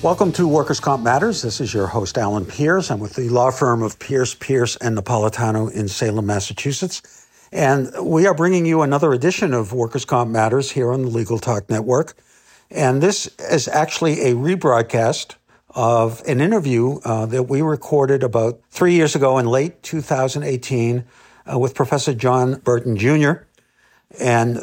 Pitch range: 115-145 Hz